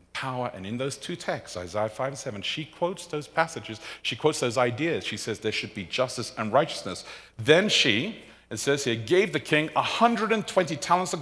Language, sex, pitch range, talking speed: English, male, 95-150 Hz, 200 wpm